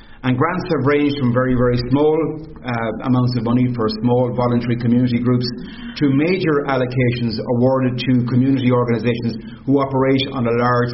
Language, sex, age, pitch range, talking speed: English, male, 40-59, 120-140 Hz, 160 wpm